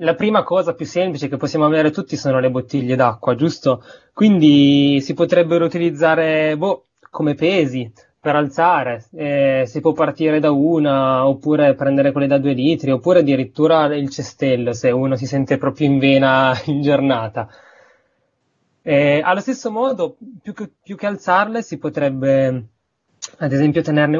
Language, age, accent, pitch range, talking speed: Italian, 20-39, native, 135-170 Hz, 155 wpm